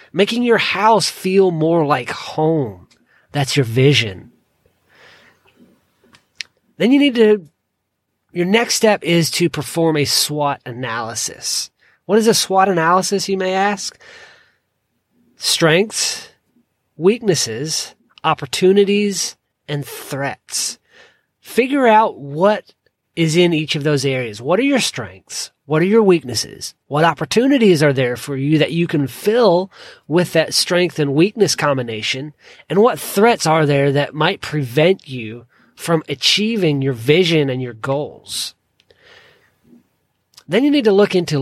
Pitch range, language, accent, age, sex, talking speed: 135-195 Hz, English, American, 30-49, male, 130 wpm